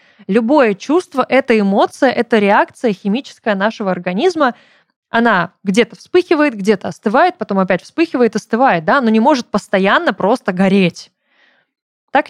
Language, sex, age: Russian, female, 20-39